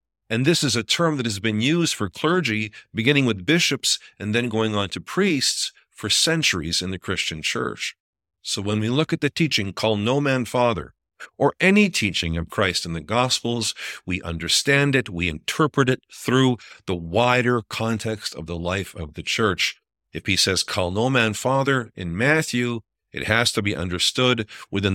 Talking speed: 185 wpm